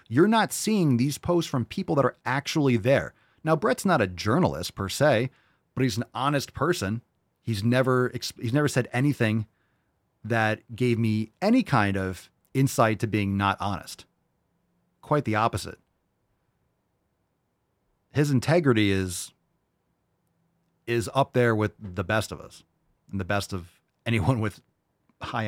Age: 30-49